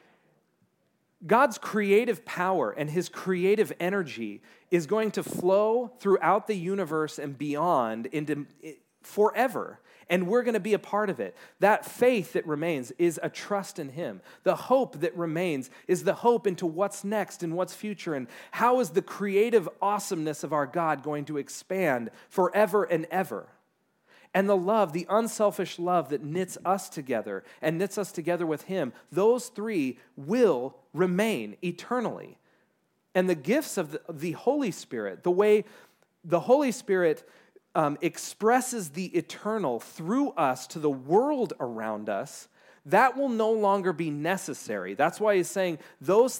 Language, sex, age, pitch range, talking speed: English, male, 40-59, 165-215 Hz, 155 wpm